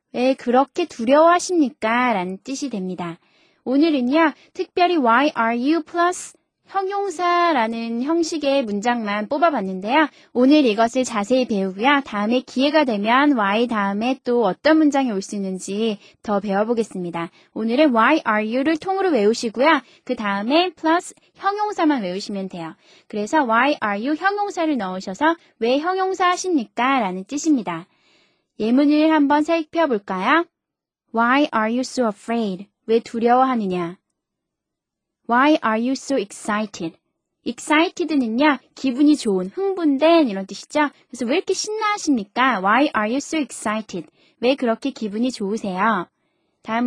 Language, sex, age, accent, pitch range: Korean, female, 20-39, native, 215-315 Hz